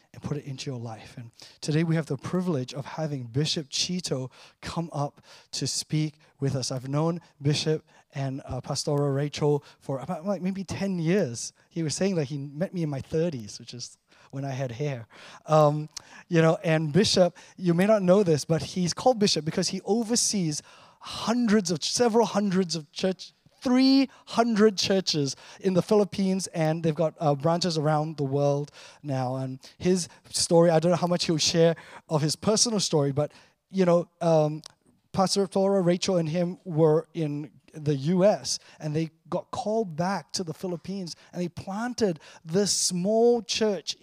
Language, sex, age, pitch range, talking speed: English, male, 20-39, 145-185 Hz, 175 wpm